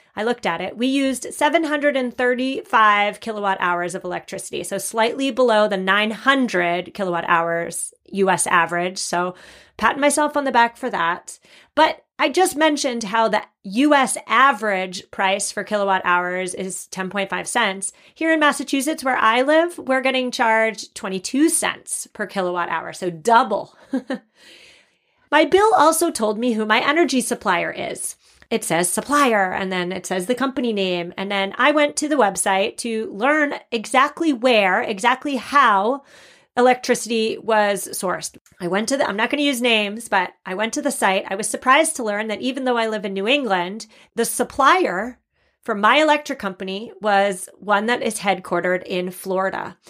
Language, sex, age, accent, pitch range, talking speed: English, female, 30-49, American, 195-265 Hz, 165 wpm